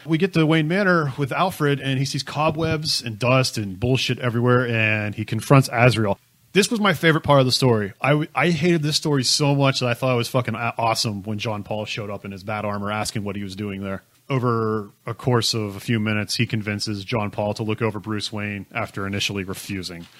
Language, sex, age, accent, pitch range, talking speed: English, male, 30-49, American, 105-130 Hz, 230 wpm